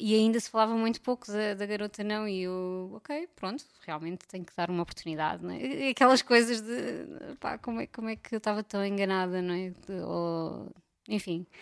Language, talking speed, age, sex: Portuguese, 180 wpm, 20-39, female